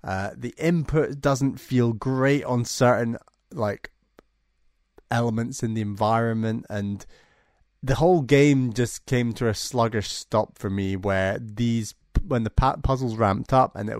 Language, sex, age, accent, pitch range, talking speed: English, male, 20-39, British, 105-130 Hz, 145 wpm